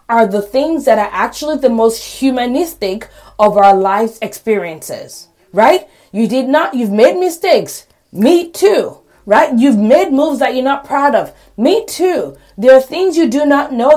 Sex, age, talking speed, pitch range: female, 30-49, 170 wpm, 215-300 Hz